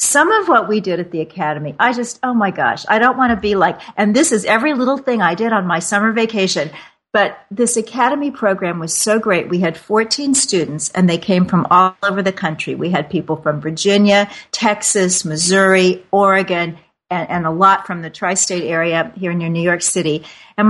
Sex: female